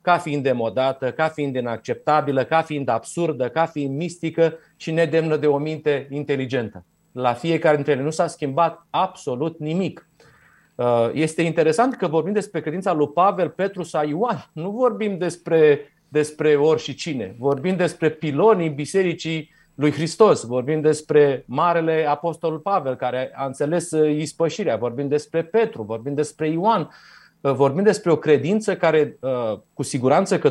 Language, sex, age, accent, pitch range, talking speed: Romanian, male, 30-49, native, 145-185 Hz, 145 wpm